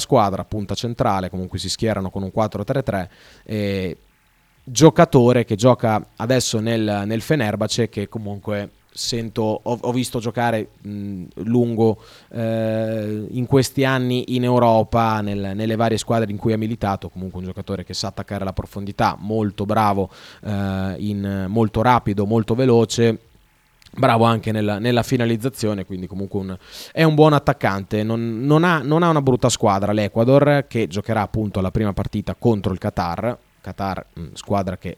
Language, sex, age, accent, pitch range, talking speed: Italian, male, 20-39, native, 100-125 Hz, 155 wpm